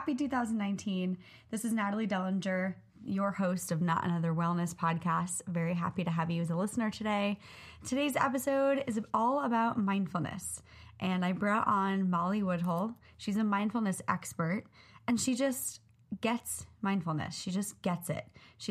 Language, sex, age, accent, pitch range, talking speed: English, female, 20-39, American, 175-215 Hz, 155 wpm